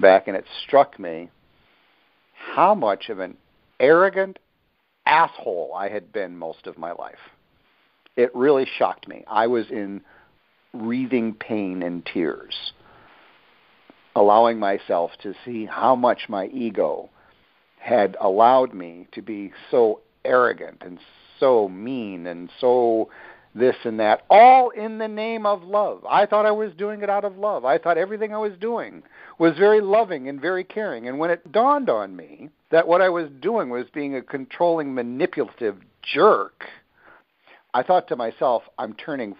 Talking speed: 155 wpm